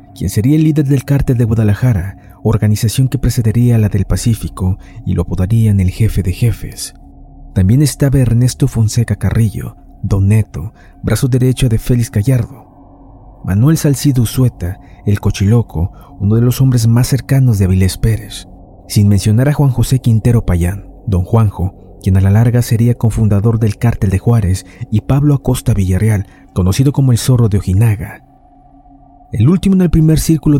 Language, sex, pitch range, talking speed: Spanish, male, 100-130 Hz, 165 wpm